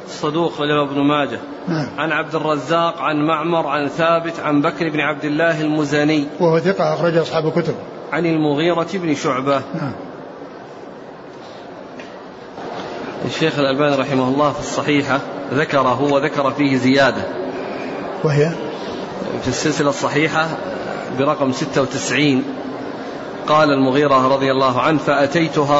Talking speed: 110 wpm